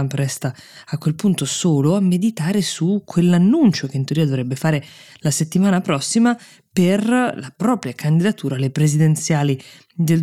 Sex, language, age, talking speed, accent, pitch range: female, Italian, 20-39, 140 wpm, native, 135-170 Hz